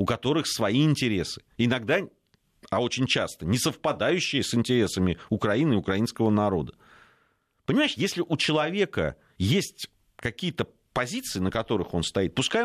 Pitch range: 100-140 Hz